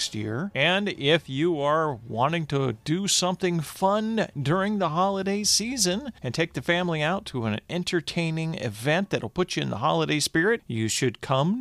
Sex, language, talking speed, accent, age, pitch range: male, English, 175 wpm, American, 40-59, 130-185 Hz